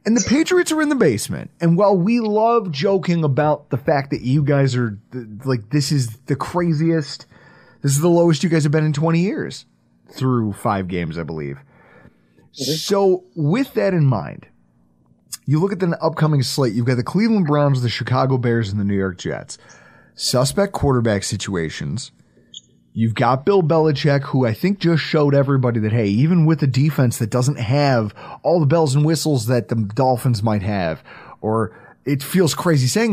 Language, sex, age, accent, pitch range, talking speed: English, male, 30-49, American, 120-170 Hz, 185 wpm